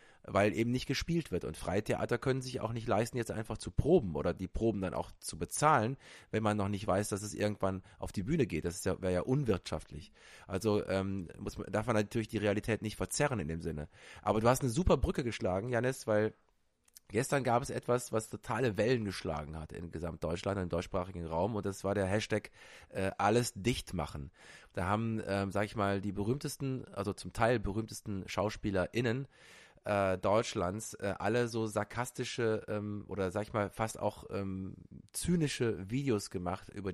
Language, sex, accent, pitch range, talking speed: English, male, German, 95-120 Hz, 190 wpm